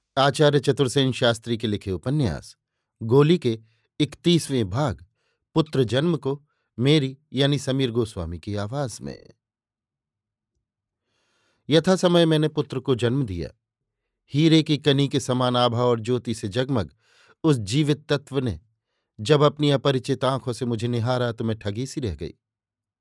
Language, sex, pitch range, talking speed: Hindi, male, 115-140 Hz, 140 wpm